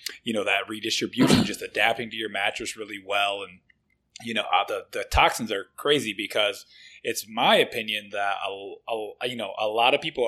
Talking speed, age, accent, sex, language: 185 wpm, 20-39, American, male, English